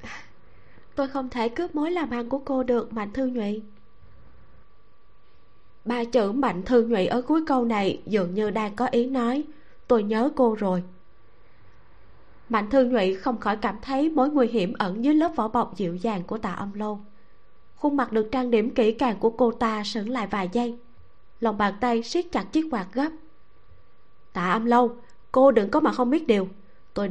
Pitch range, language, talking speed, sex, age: 205-260 Hz, Vietnamese, 190 wpm, female, 20-39